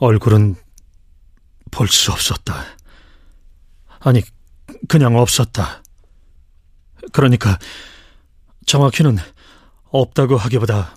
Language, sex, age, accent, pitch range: Korean, male, 40-59, native, 80-125 Hz